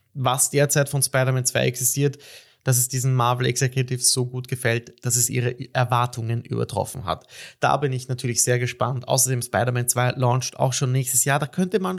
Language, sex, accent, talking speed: German, male, German, 185 wpm